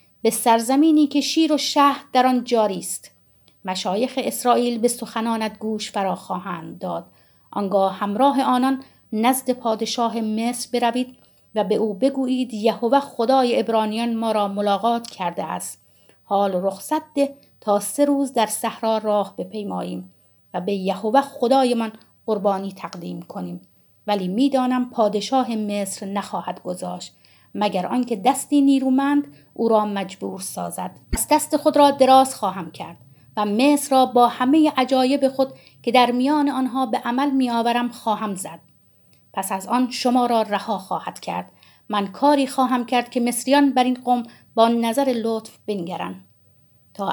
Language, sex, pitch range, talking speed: Persian, female, 200-260 Hz, 145 wpm